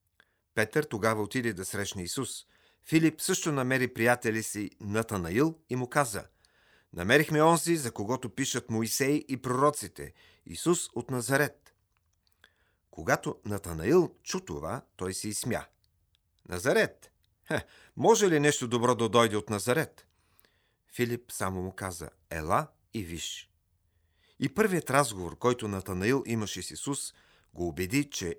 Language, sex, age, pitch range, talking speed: Bulgarian, male, 40-59, 95-130 Hz, 130 wpm